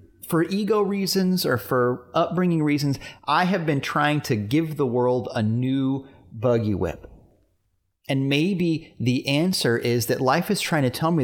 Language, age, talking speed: English, 30-49, 165 wpm